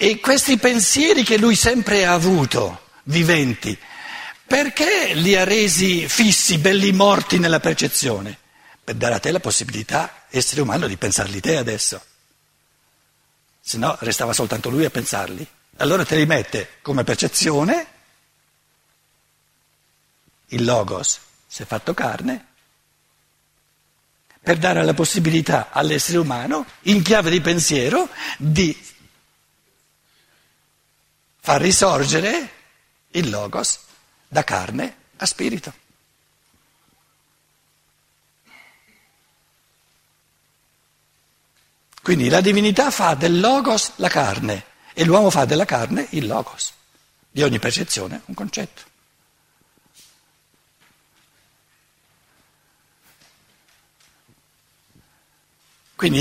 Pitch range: 150-205 Hz